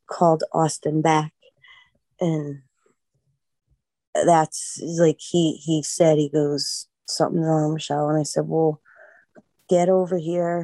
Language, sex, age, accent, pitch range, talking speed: English, female, 30-49, American, 155-190 Hz, 120 wpm